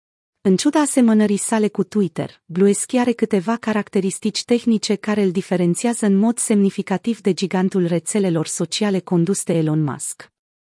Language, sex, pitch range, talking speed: Romanian, female, 175-220 Hz, 140 wpm